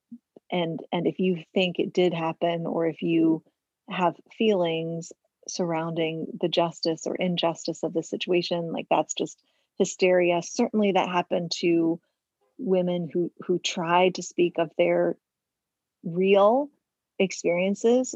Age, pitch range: 30-49, 170-210 Hz